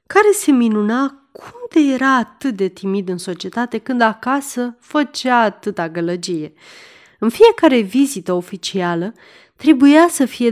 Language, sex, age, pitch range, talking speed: Romanian, female, 30-49, 190-255 Hz, 130 wpm